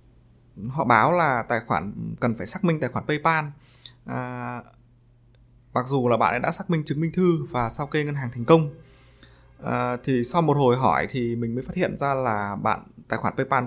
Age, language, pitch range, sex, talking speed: 20-39, Vietnamese, 115-150 Hz, male, 205 wpm